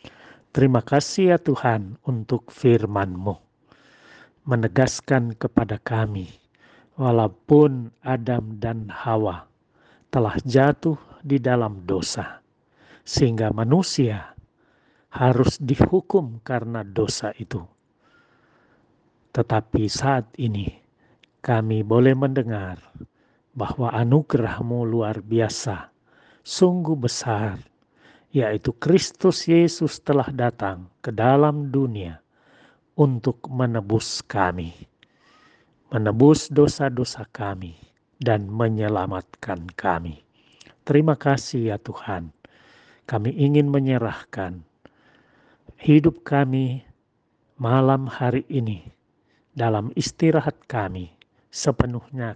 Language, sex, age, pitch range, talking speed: Indonesian, male, 50-69, 105-135 Hz, 80 wpm